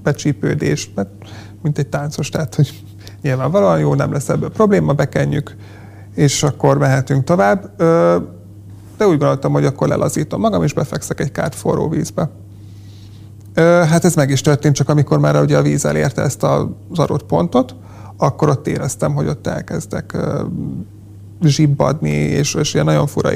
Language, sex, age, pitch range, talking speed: Hungarian, male, 30-49, 95-150 Hz, 150 wpm